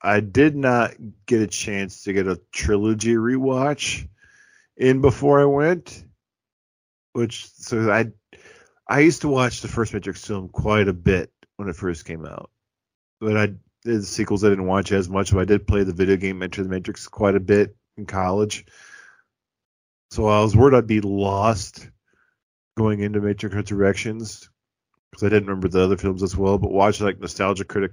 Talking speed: 180 wpm